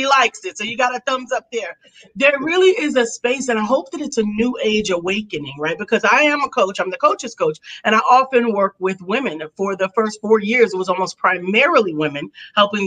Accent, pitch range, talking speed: American, 185-235 Hz, 235 wpm